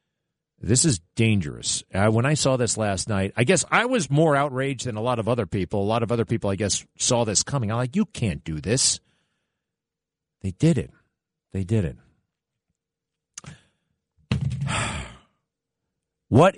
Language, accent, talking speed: English, American, 165 wpm